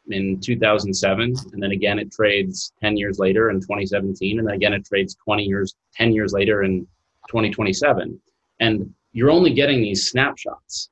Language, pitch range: English, 95-115 Hz